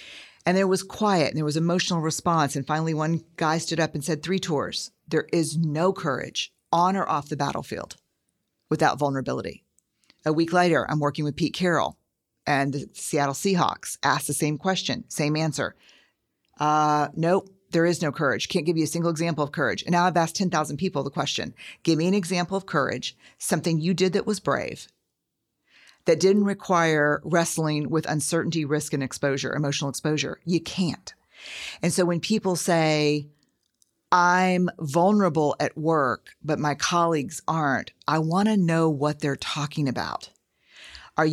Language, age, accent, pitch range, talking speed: English, 50-69, American, 150-180 Hz, 170 wpm